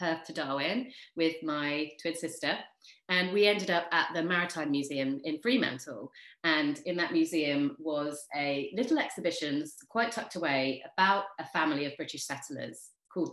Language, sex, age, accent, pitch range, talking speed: English, female, 30-49, British, 140-195 Hz, 160 wpm